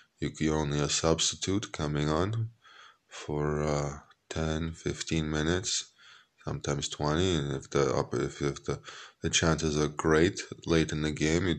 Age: 20-39